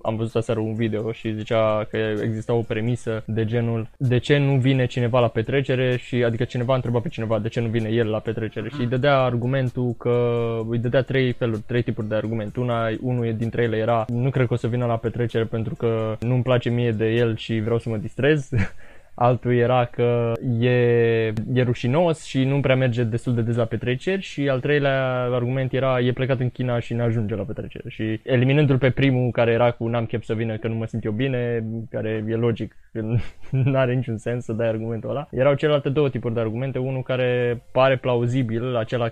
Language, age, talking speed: Romanian, 20-39, 215 wpm